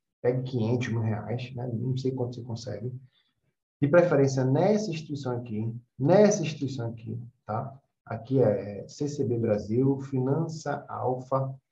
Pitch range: 125-155 Hz